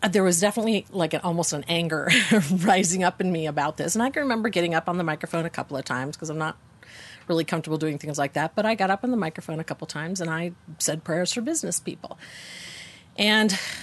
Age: 40-59